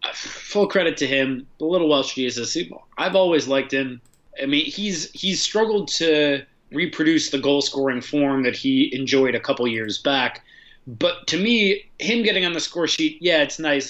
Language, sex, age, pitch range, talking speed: English, male, 30-49, 130-175 Hz, 175 wpm